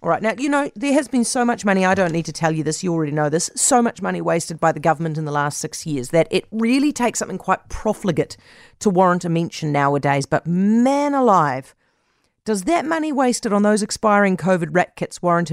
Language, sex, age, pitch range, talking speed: English, female, 40-59, 160-235 Hz, 230 wpm